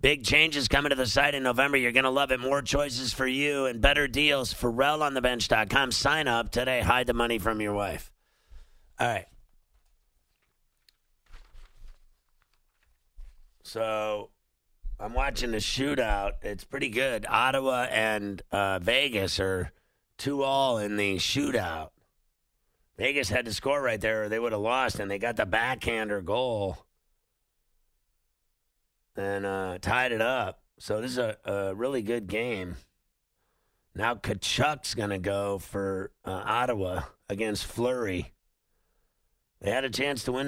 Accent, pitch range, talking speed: American, 100-130 Hz, 140 wpm